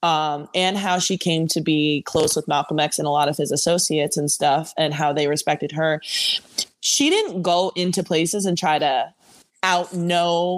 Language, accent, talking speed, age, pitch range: English, American, 195 wpm, 20-39, 155-190 Hz